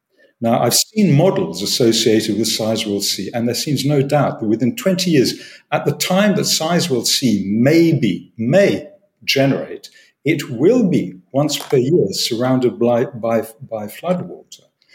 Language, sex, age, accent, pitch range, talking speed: English, male, 50-69, British, 110-160 Hz, 165 wpm